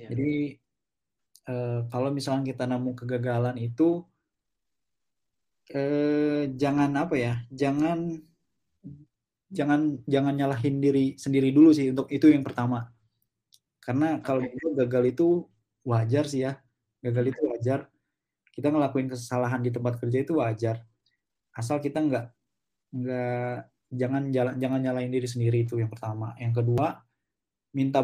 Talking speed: 125 wpm